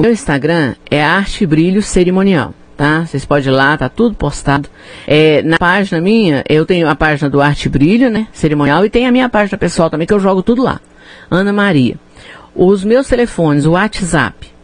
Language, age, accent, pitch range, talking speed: Portuguese, 50-69, Brazilian, 145-200 Hz, 190 wpm